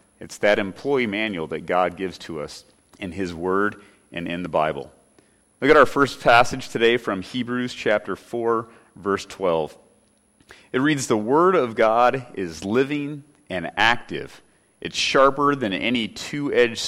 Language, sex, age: English, male, 40-59